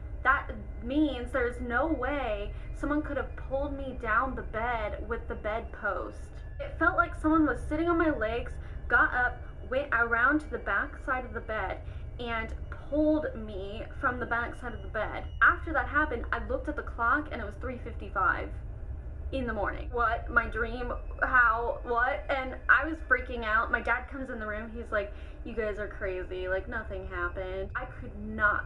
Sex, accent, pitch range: female, American, 205-280 Hz